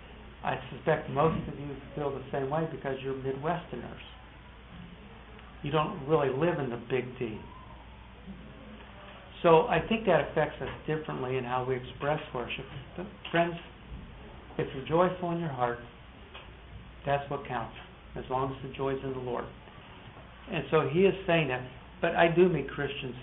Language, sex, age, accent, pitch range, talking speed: English, male, 60-79, American, 125-150 Hz, 160 wpm